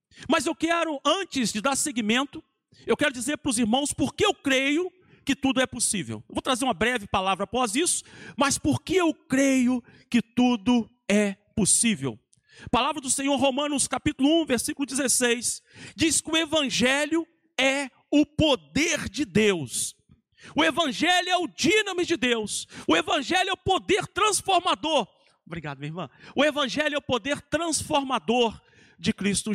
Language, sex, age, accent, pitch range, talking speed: Portuguese, male, 50-69, Brazilian, 240-315 Hz, 160 wpm